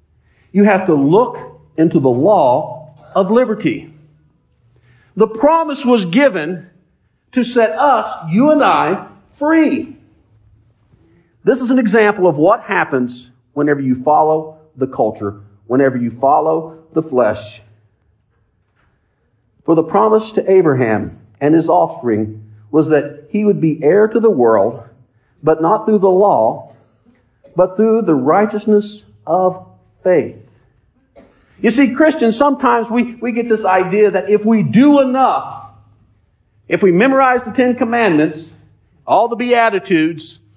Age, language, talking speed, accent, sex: 50-69, English, 130 wpm, American, male